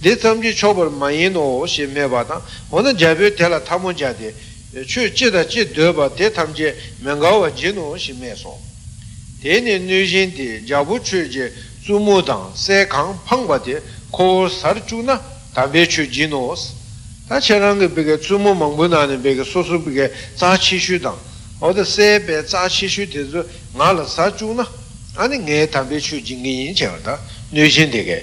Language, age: Italian, 60-79